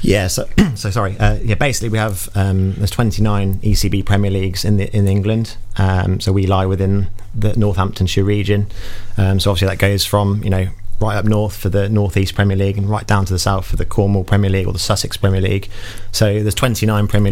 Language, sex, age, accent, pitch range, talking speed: English, male, 30-49, British, 95-105 Hz, 220 wpm